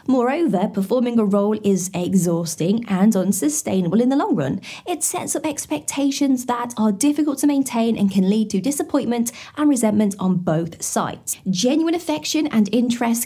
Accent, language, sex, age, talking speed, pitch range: British, English, female, 20-39, 160 wpm, 205-280 Hz